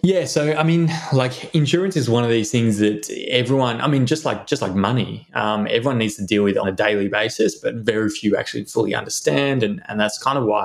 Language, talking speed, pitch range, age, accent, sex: English, 235 wpm, 105-125 Hz, 20-39, Australian, male